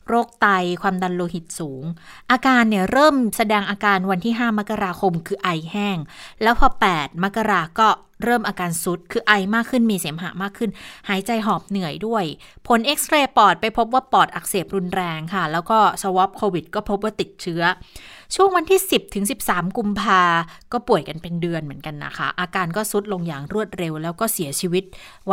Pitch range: 180-230 Hz